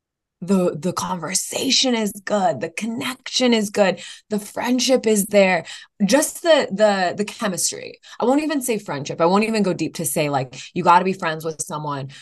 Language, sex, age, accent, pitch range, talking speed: English, female, 20-39, American, 155-210 Hz, 185 wpm